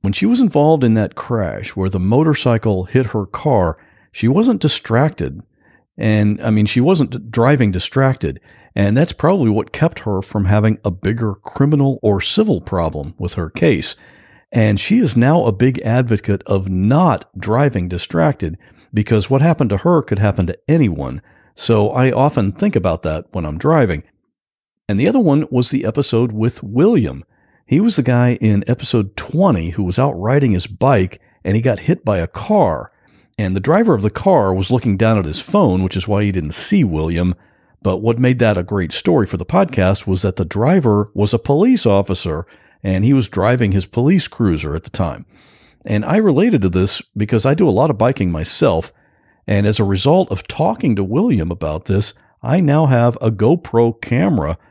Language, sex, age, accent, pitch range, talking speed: English, male, 50-69, American, 95-130 Hz, 190 wpm